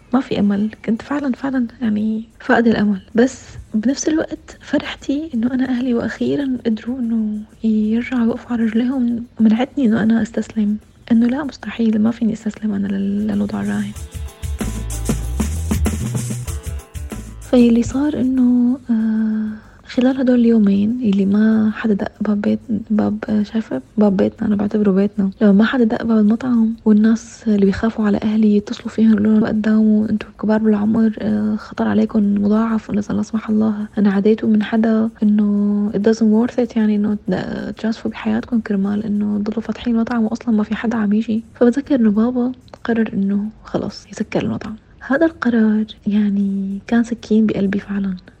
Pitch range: 210-230 Hz